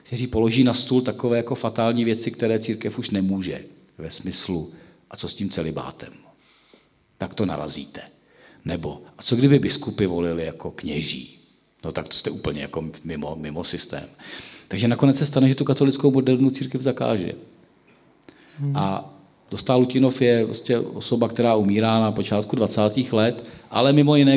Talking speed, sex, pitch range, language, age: 160 wpm, male, 110-130 Hz, Czech, 40-59